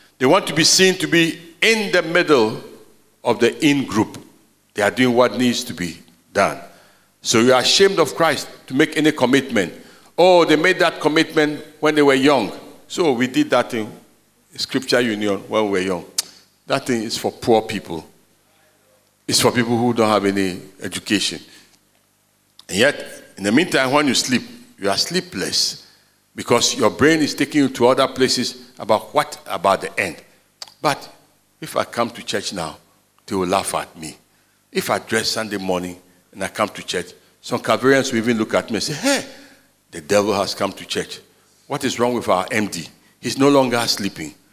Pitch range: 110-160 Hz